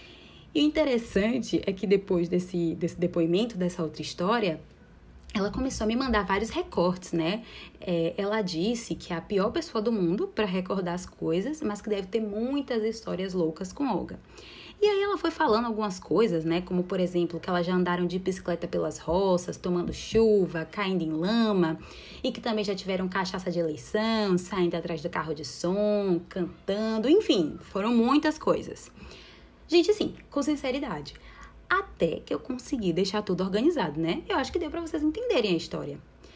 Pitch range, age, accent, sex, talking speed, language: 175-260 Hz, 20-39, Brazilian, female, 175 wpm, Portuguese